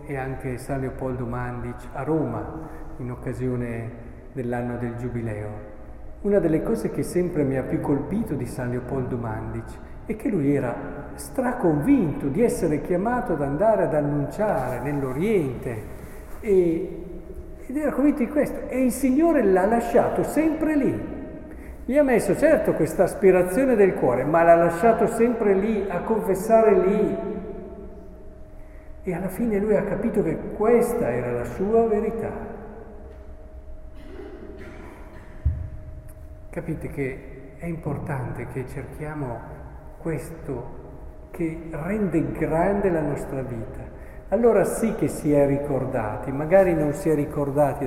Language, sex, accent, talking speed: Italian, male, native, 130 wpm